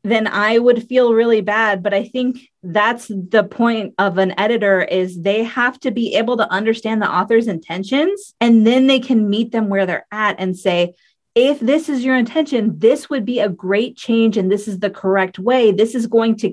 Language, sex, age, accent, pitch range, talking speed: English, female, 20-39, American, 195-245 Hz, 210 wpm